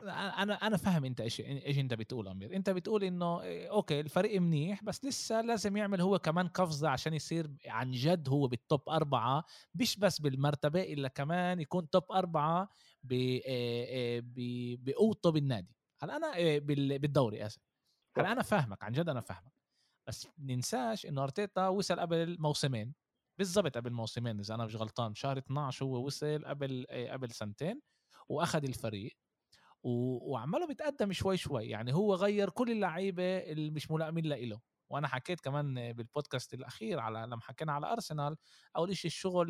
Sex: male